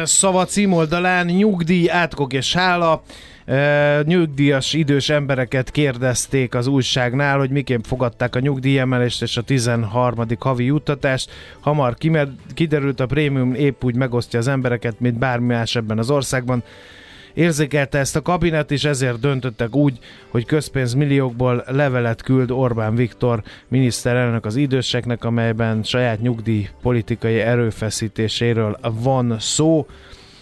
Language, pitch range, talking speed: Hungarian, 120-145 Hz, 125 wpm